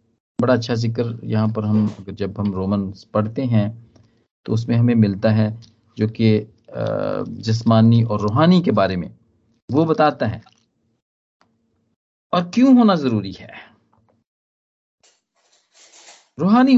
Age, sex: 50-69, male